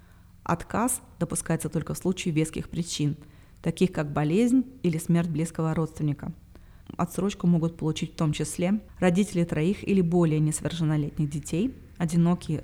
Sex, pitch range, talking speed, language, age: female, 150-175 Hz, 130 wpm, Russian, 30-49